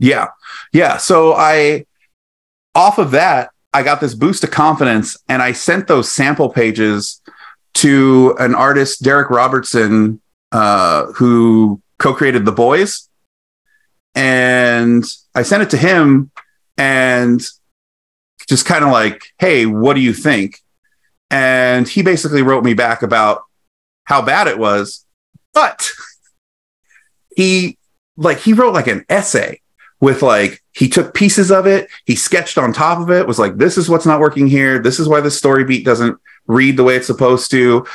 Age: 30-49